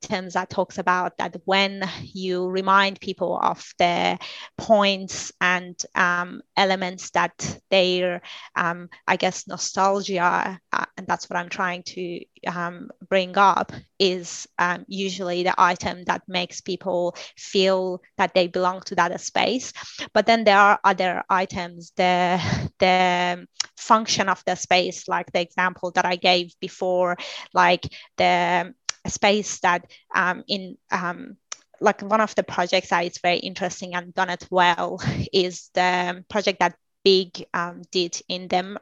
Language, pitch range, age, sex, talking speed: English, 180-195 Hz, 20-39, female, 145 wpm